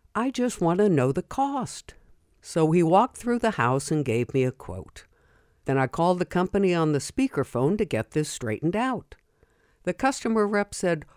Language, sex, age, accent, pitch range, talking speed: English, female, 60-79, American, 115-185 Hz, 190 wpm